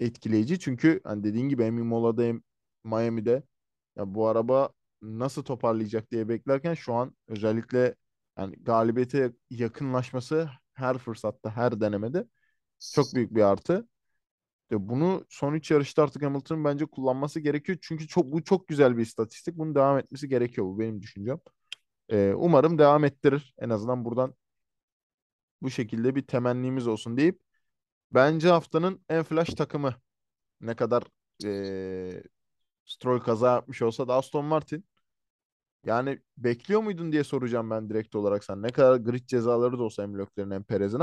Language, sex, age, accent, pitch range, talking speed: Turkish, male, 20-39, native, 110-140 Hz, 140 wpm